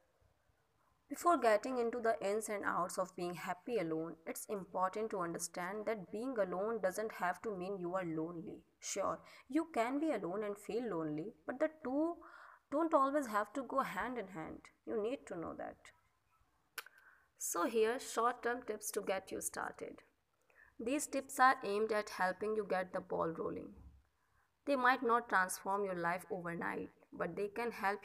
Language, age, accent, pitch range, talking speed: Hindi, 20-39, native, 185-255 Hz, 170 wpm